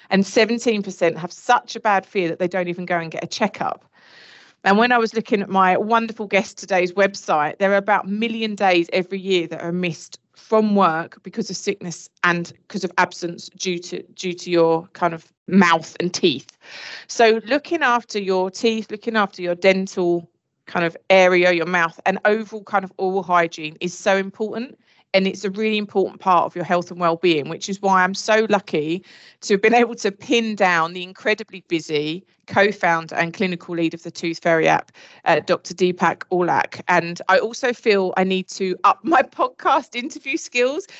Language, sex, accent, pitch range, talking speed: English, female, British, 175-215 Hz, 195 wpm